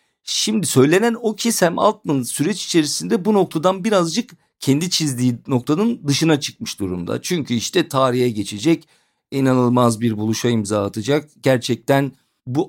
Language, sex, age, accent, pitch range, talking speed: Turkish, male, 50-69, native, 115-165 Hz, 130 wpm